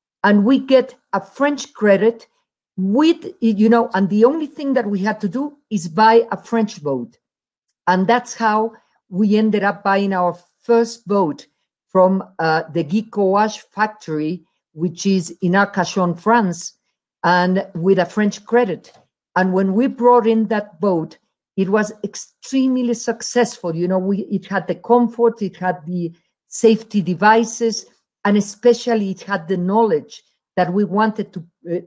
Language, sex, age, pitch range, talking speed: Dutch, female, 50-69, 185-230 Hz, 155 wpm